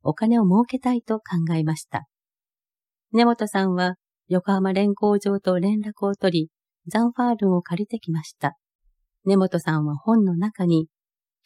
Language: Japanese